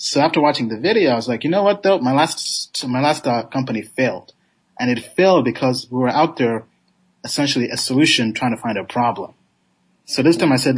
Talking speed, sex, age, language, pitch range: 225 wpm, male, 30-49, English, 115-140 Hz